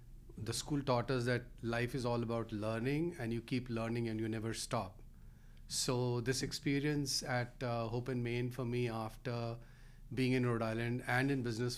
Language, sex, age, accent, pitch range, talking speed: English, male, 40-59, Indian, 115-130 Hz, 185 wpm